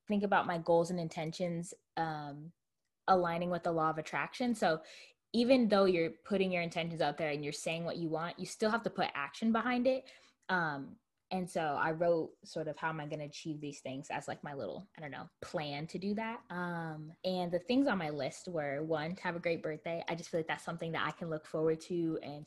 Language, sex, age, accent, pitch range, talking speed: English, female, 20-39, American, 155-190 Hz, 240 wpm